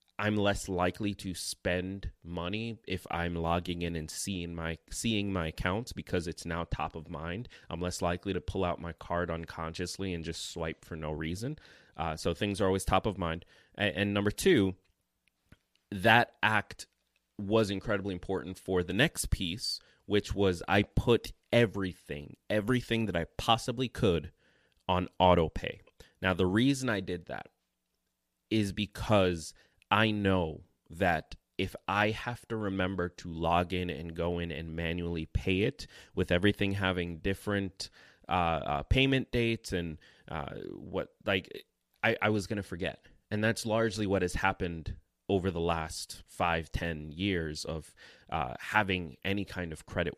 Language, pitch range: English, 85-105 Hz